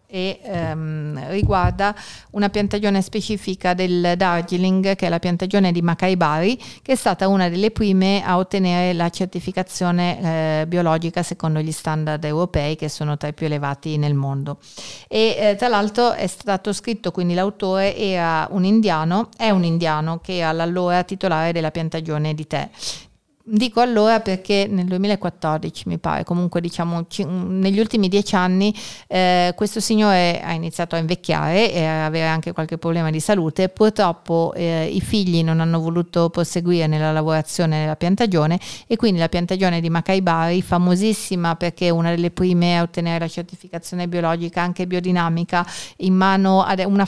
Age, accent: 40-59, native